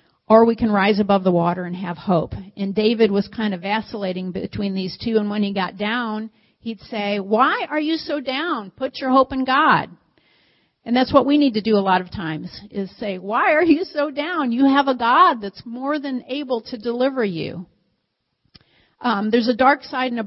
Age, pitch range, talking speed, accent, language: 50-69, 195-235 Hz, 215 wpm, American, English